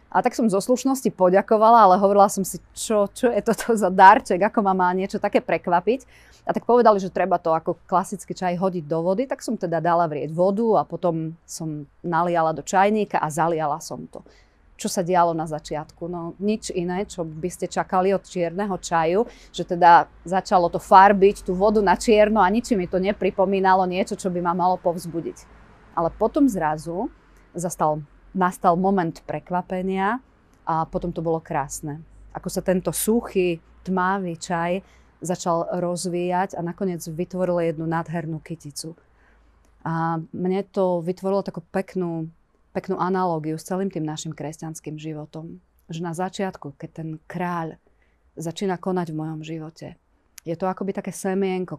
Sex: female